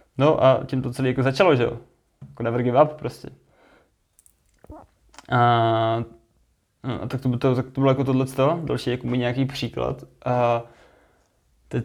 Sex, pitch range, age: male, 120-130 Hz, 20-39